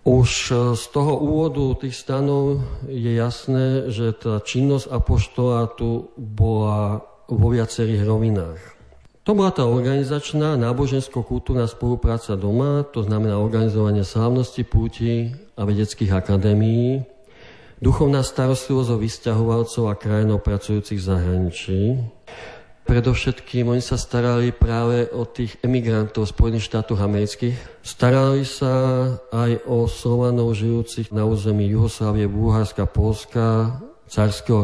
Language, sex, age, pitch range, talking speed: Slovak, male, 50-69, 105-125 Hz, 115 wpm